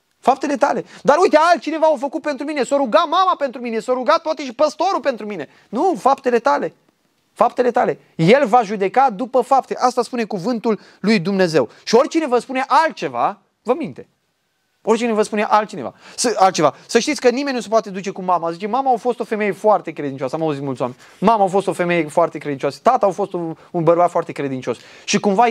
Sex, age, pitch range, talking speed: male, 20-39, 165-245 Hz, 210 wpm